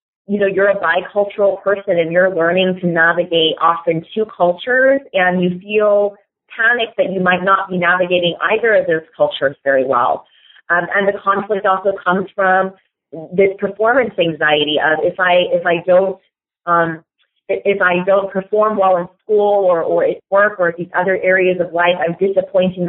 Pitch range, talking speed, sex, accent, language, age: 165-200 Hz, 175 wpm, female, American, English, 30-49